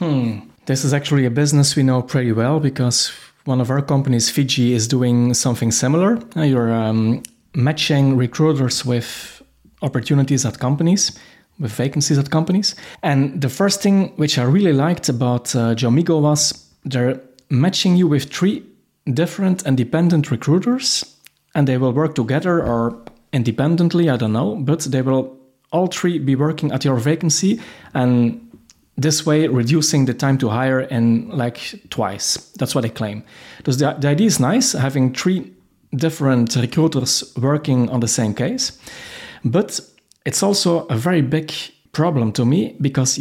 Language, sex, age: English, male, 30-49